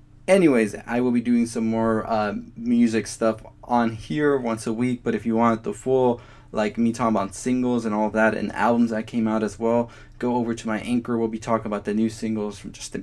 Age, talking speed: 20-39, 230 wpm